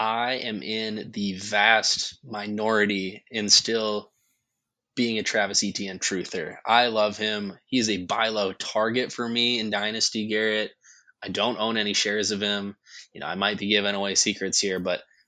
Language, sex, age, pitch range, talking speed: English, male, 20-39, 95-110 Hz, 170 wpm